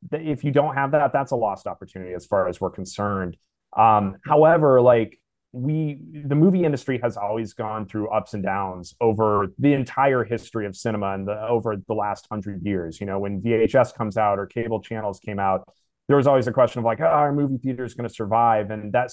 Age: 30-49